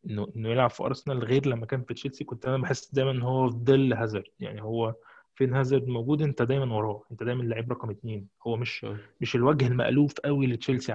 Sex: male